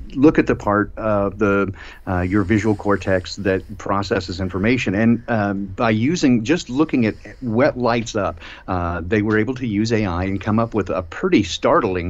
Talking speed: 185 wpm